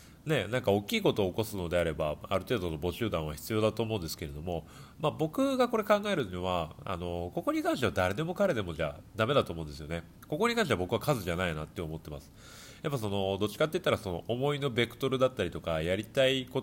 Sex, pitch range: male, 85-130 Hz